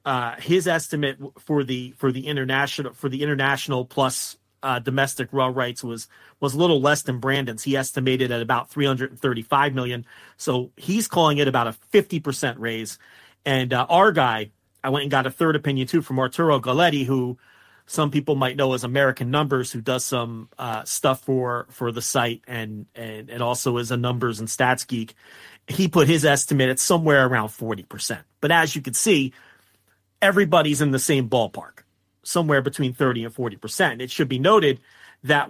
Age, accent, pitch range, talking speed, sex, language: 30-49, American, 120-145 Hz, 185 wpm, male, English